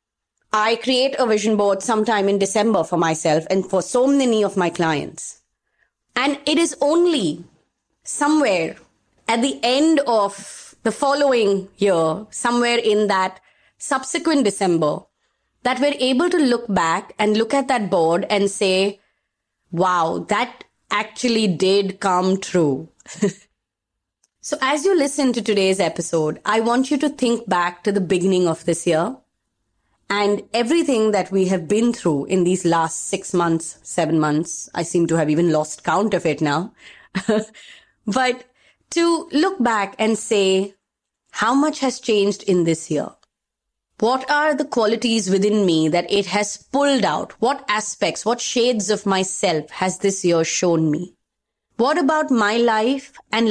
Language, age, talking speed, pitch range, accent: English, 20-39, 155 wpm, 175-240 Hz, Indian